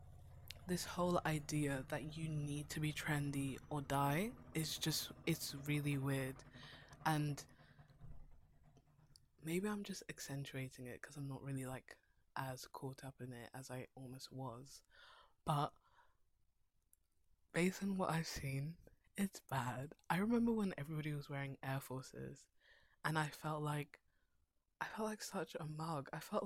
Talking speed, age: 145 wpm, 20-39